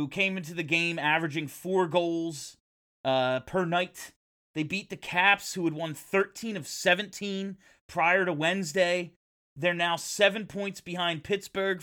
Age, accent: 30-49, American